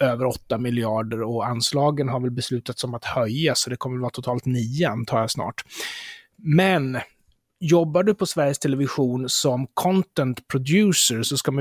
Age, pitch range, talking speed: 30-49, 130-175 Hz, 170 wpm